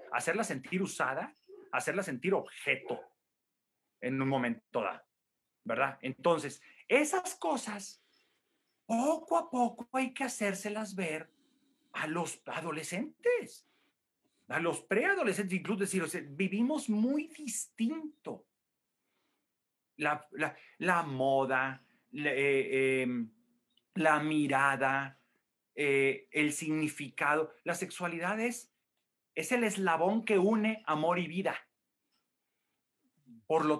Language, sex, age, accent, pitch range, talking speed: English, male, 40-59, Mexican, 155-245 Hz, 100 wpm